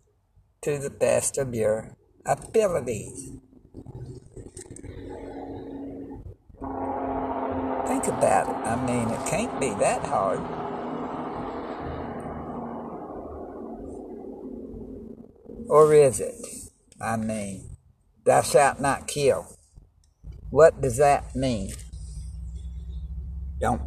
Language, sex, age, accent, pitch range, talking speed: English, male, 60-79, American, 90-130 Hz, 75 wpm